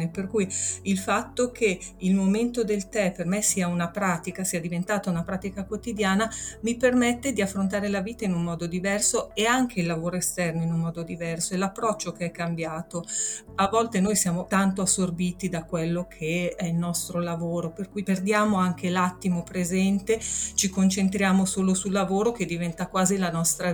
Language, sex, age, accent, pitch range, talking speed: Italian, female, 40-59, native, 180-220 Hz, 180 wpm